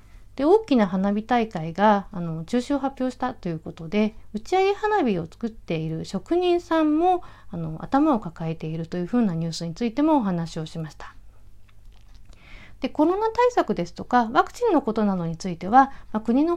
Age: 40-59